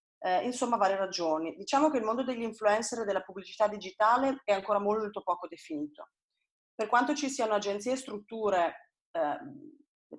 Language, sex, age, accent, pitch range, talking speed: Italian, female, 30-49, native, 195-235 Hz, 160 wpm